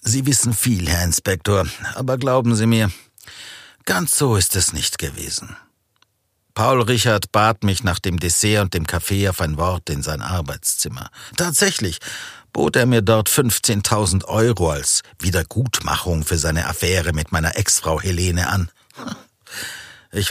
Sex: male